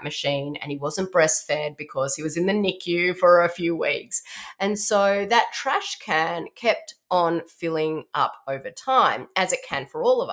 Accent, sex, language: Australian, female, English